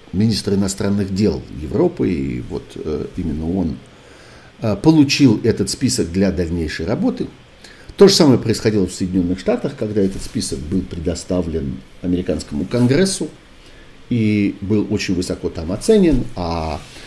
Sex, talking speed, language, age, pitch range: male, 130 wpm, Russian, 50-69, 85-105 Hz